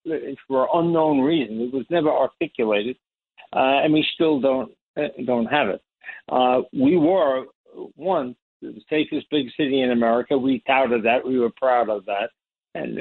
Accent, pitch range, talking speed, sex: American, 115-140 Hz, 160 wpm, male